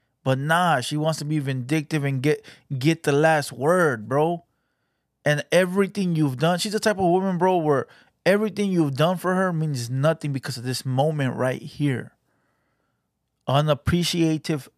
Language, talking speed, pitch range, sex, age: English, 160 wpm, 140-175 Hz, male, 30-49